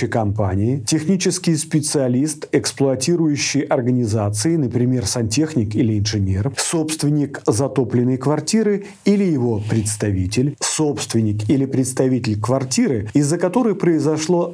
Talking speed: 90 wpm